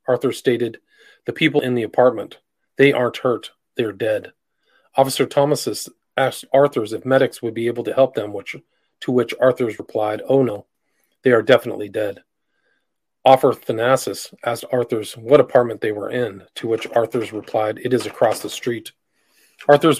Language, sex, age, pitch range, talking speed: English, male, 40-59, 115-140 Hz, 160 wpm